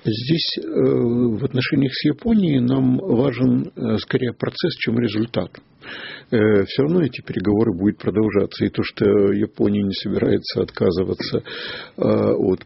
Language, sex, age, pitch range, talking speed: Russian, male, 50-69, 100-130 Hz, 120 wpm